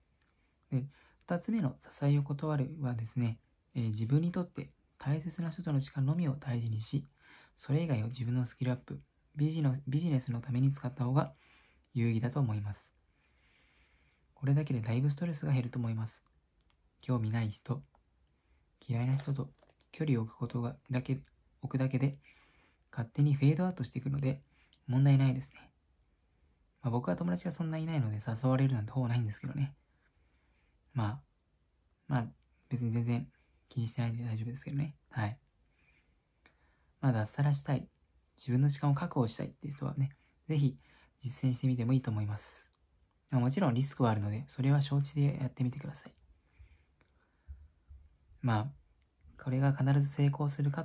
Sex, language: male, Japanese